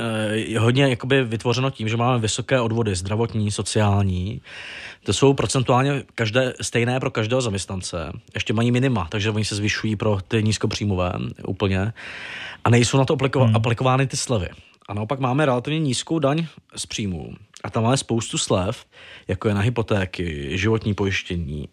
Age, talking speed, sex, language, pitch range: 20-39, 155 wpm, male, Czech, 105-130 Hz